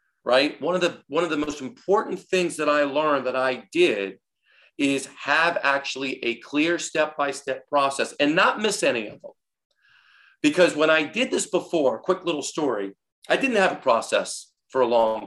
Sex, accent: male, American